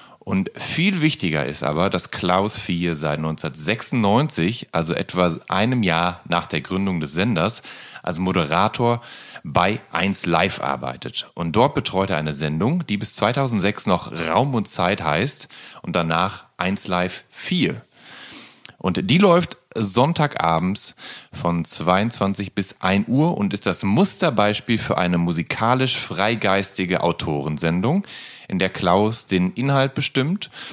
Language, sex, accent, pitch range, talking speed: German, male, German, 90-135 Hz, 130 wpm